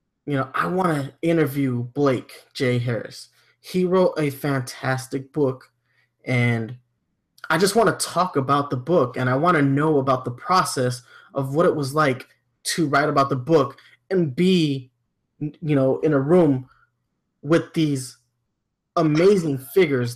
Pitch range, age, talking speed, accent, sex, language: 130-155 Hz, 20-39, 155 wpm, American, male, English